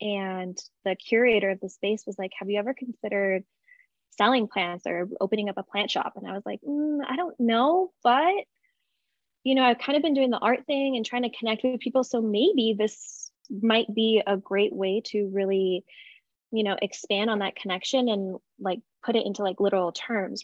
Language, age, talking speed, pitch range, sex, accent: English, 20-39, 205 wpm, 190-245 Hz, female, American